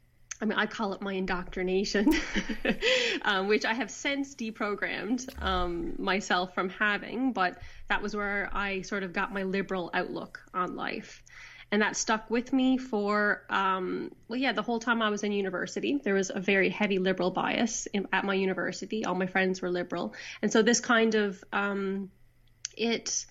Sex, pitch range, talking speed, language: female, 190-235 Hz, 180 wpm, English